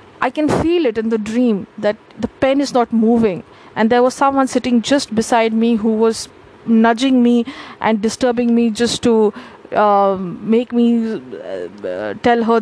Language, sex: English, female